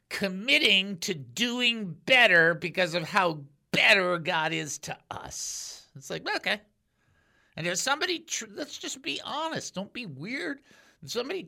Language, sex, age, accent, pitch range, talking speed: English, male, 50-69, American, 155-225 Hz, 145 wpm